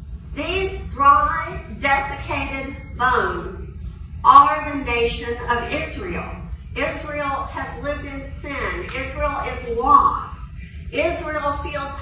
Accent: American